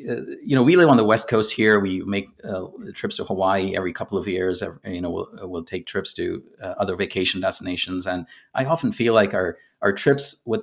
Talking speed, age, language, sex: 230 wpm, 30-49, English, male